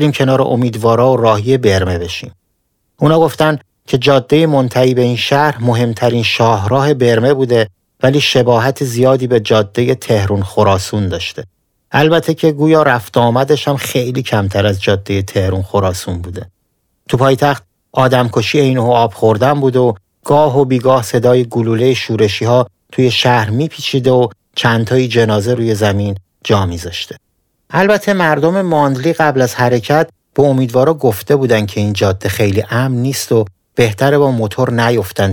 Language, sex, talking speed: Persian, male, 145 wpm